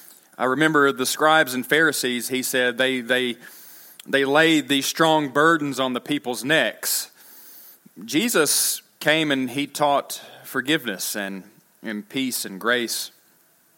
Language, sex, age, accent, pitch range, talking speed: English, male, 30-49, American, 125-160 Hz, 130 wpm